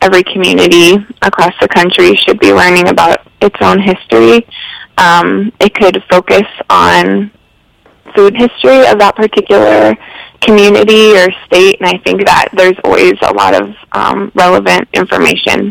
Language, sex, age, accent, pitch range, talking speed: English, female, 20-39, American, 180-210 Hz, 140 wpm